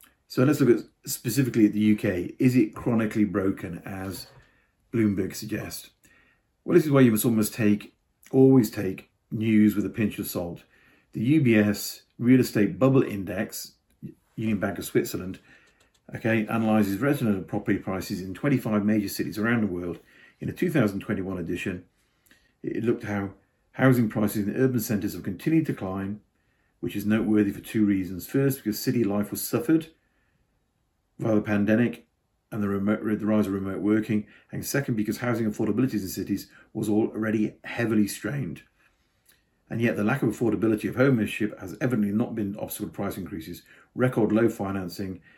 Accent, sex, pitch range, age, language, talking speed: British, male, 100-115 Hz, 50-69, English, 165 wpm